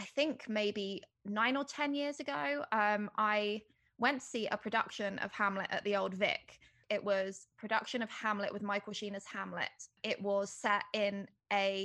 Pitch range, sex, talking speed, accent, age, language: 200-220 Hz, female, 180 wpm, British, 20-39, English